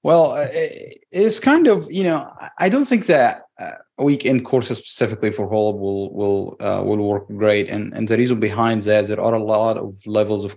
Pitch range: 105-130 Hz